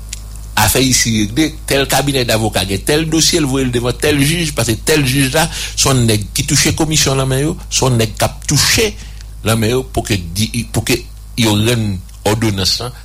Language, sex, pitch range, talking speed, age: English, male, 95-115 Hz, 180 wpm, 60-79